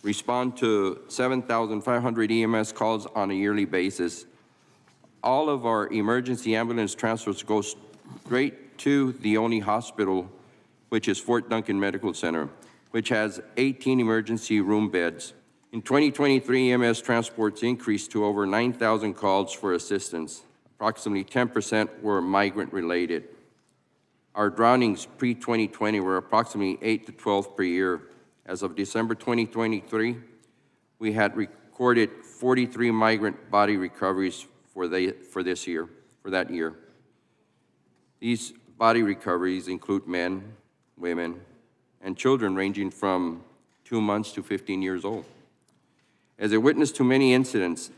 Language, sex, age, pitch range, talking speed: English, male, 50-69, 95-115 Hz, 125 wpm